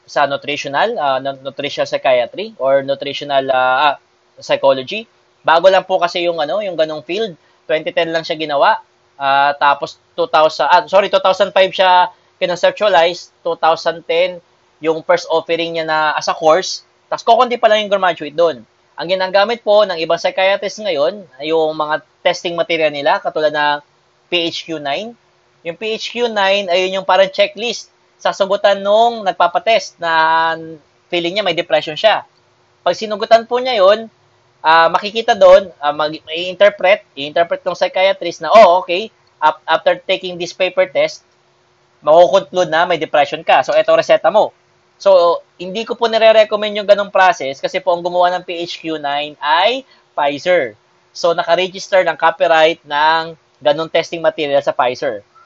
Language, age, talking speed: English, 20-39, 145 wpm